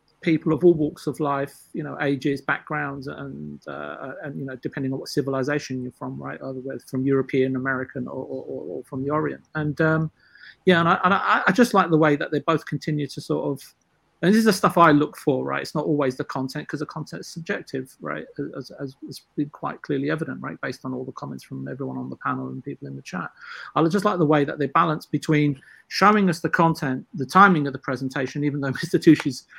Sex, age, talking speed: male, 40-59, 235 wpm